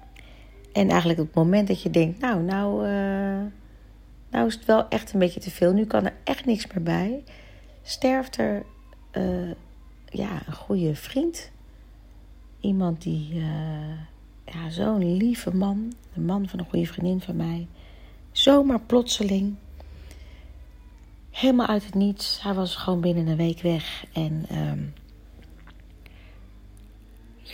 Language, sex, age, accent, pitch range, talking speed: Dutch, female, 40-59, Dutch, 135-195 Hz, 140 wpm